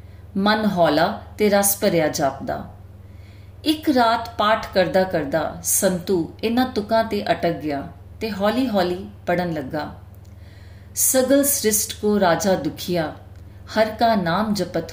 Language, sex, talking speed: Punjabi, female, 115 wpm